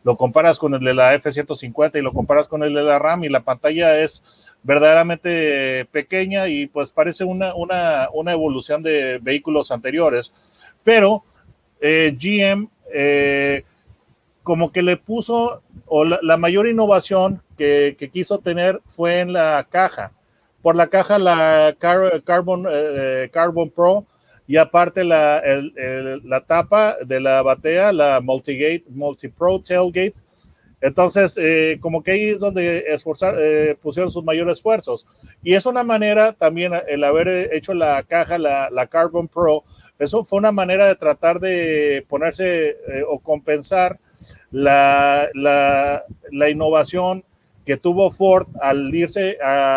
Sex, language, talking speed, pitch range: male, Spanish, 145 wpm, 145-185 Hz